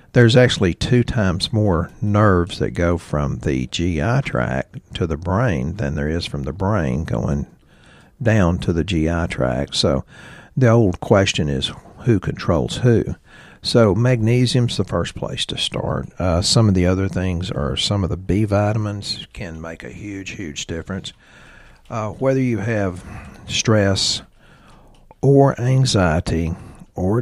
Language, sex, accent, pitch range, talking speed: English, male, American, 85-110 Hz, 150 wpm